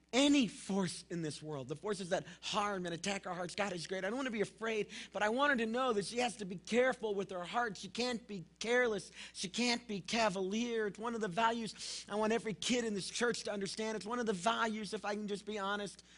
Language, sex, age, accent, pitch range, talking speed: English, male, 40-59, American, 165-225 Hz, 260 wpm